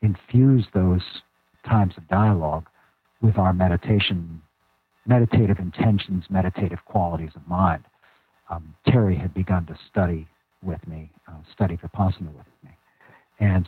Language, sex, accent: English, male, American